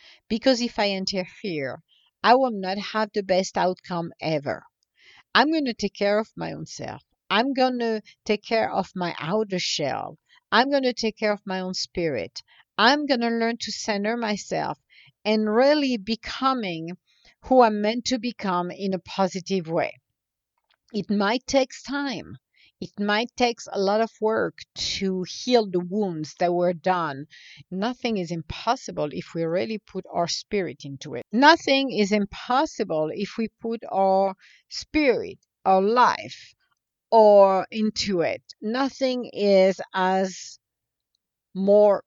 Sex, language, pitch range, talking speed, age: female, English, 180-230 Hz, 150 wpm, 50-69